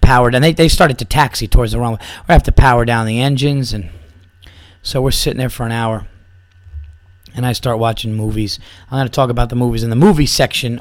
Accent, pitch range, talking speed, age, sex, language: American, 95-130 Hz, 220 wpm, 30-49, male, English